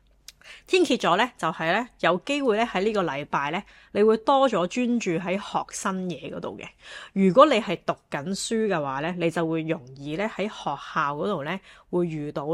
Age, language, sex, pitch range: 20-39, Chinese, female, 155-205 Hz